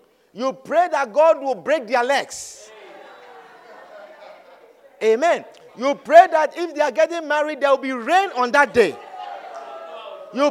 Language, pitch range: English, 200-315 Hz